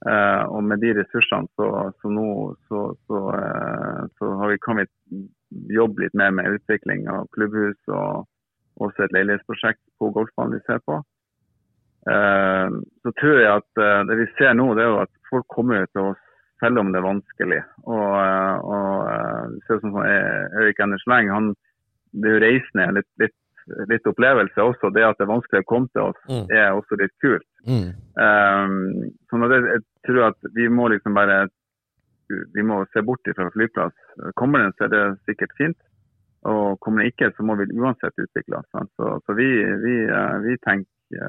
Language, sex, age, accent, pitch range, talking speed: English, male, 30-49, Norwegian, 100-115 Hz, 175 wpm